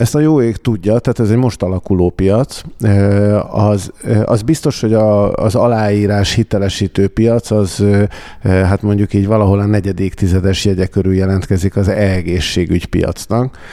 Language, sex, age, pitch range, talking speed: Hungarian, male, 50-69, 95-105 Hz, 150 wpm